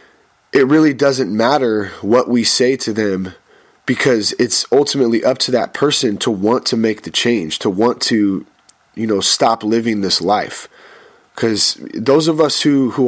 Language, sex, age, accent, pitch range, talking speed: English, male, 30-49, American, 105-130 Hz, 170 wpm